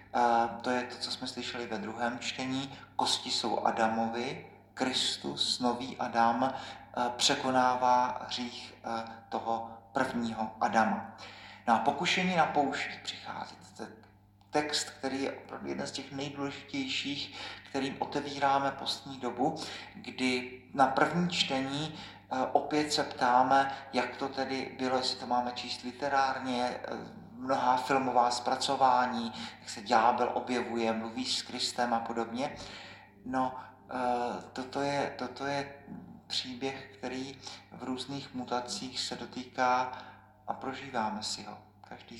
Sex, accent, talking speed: male, native, 120 wpm